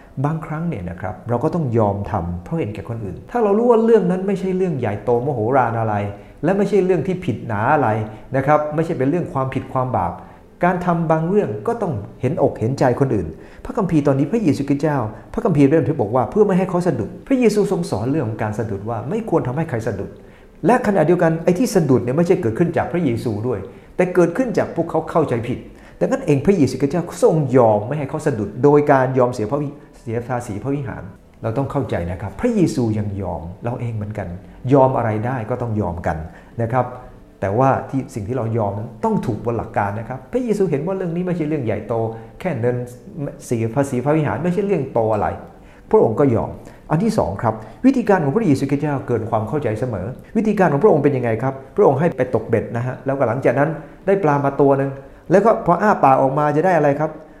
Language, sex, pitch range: English, male, 115-165 Hz